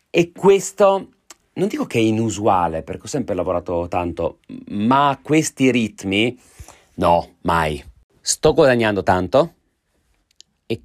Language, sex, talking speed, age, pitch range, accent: Italian, male, 115 wpm, 30-49, 85-115 Hz, native